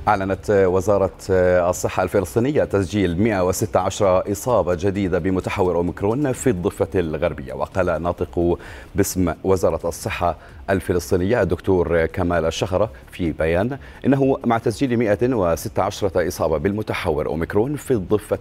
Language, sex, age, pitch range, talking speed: Arabic, male, 30-49, 85-105 Hz, 110 wpm